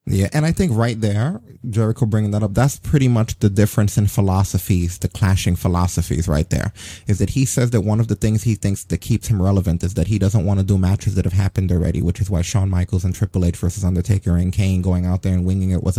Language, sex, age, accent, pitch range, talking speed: English, male, 30-49, American, 95-115 Hz, 255 wpm